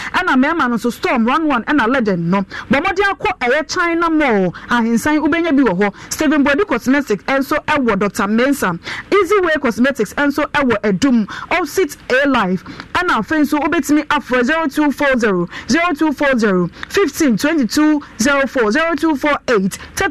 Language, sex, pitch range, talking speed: English, female, 235-315 Hz, 190 wpm